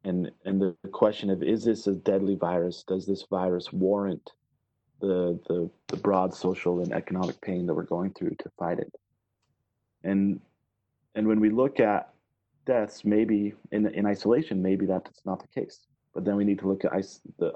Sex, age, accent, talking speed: male, 30-49, American, 185 wpm